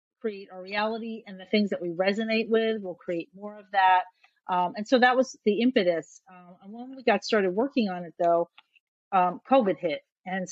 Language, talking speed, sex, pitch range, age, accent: English, 205 wpm, female, 175-215 Hz, 40-59, American